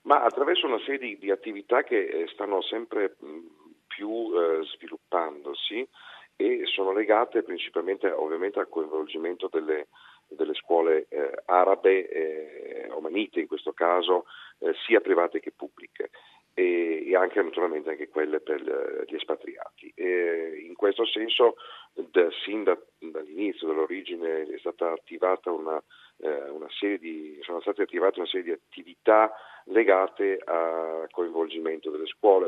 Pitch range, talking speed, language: 345-440 Hz, 135 wpm, Italian